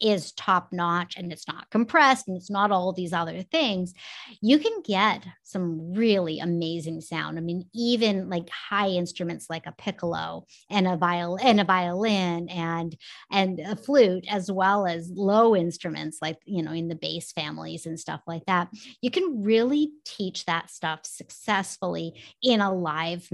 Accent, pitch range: American, 170-210 Hz